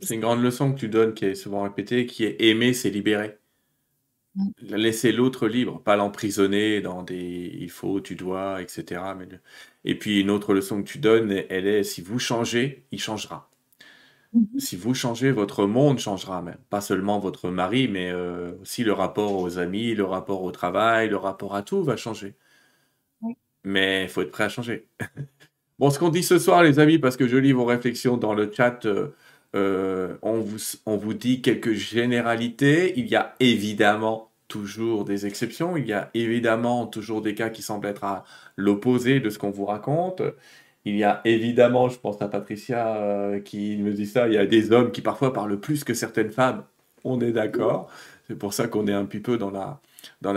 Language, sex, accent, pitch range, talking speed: French, male, French, 100-125 Hz, 200 wpm